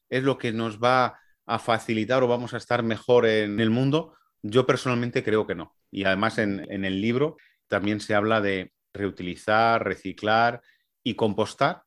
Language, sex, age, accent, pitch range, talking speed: Spanish, male, 30-49, Spanish, 105-130 Hz, 170 wpm